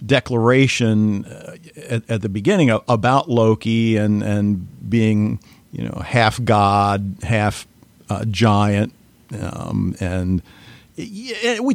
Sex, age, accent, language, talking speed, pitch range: male, 50-69, American, English, 90 wpm, 110-130 Hz